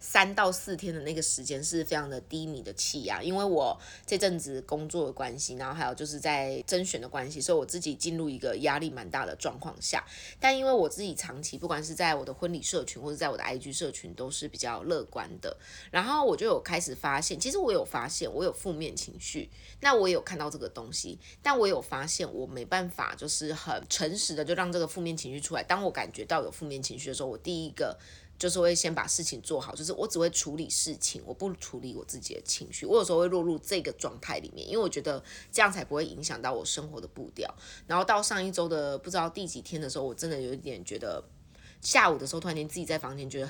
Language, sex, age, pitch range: Chinese, female, 20-39, 145-180 Hz